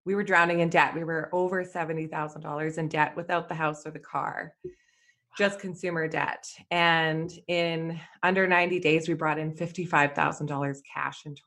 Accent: American